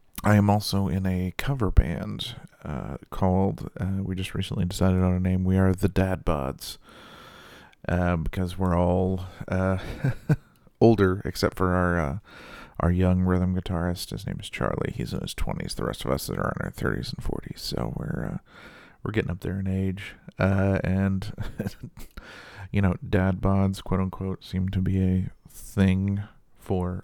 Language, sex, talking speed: English, male, 175 wpm